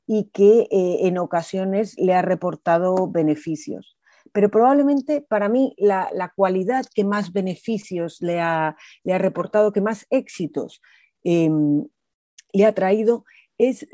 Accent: Spanish